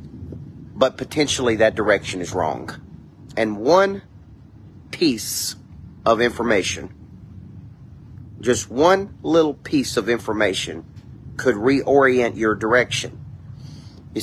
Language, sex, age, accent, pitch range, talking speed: English, male, 40-59, American, 105-130 Hz, 95 wpm